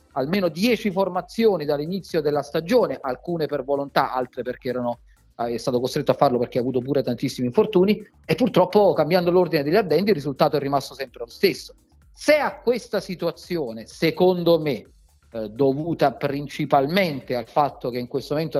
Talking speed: 160 wpm